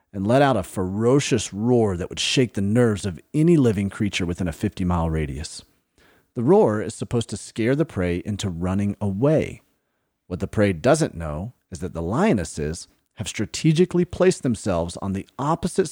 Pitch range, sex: 90-125 Hz, male